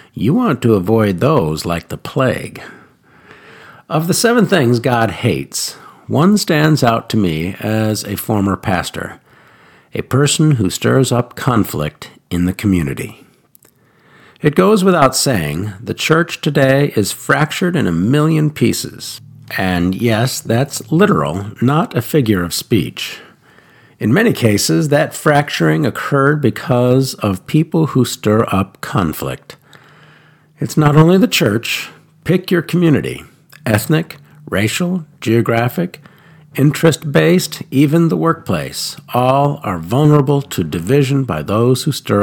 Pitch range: 105-155 Hz